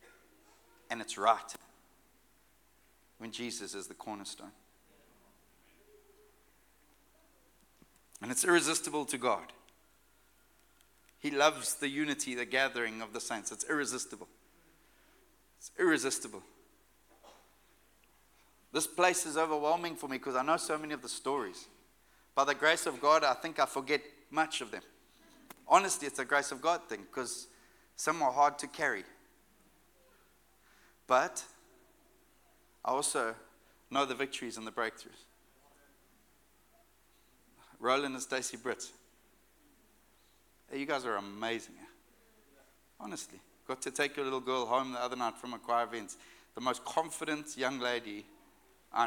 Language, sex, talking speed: English, male, 125 wpm